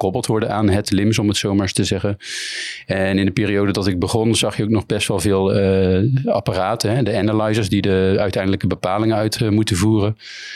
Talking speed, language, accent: 215 wpm, Dutch, Dutch